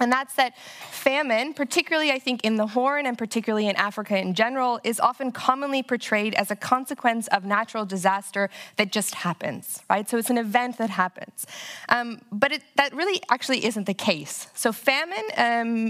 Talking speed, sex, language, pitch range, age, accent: 175 wpm, female, Dutch, 200-245 Hz, 20-39, American